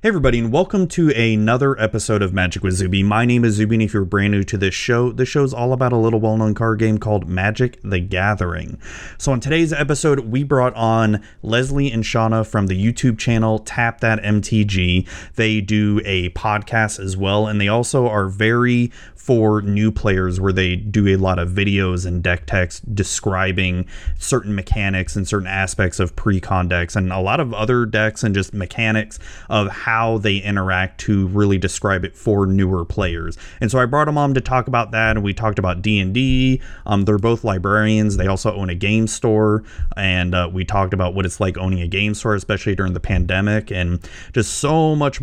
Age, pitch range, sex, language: 30-49, 95-115 Hz, male, English